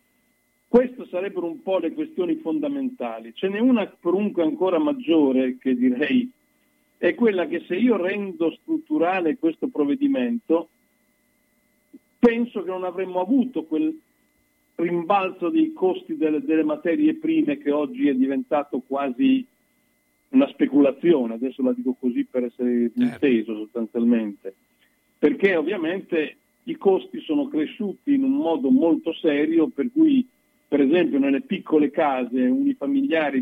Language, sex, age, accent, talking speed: Italian, male, 50-69, native, 125 wpm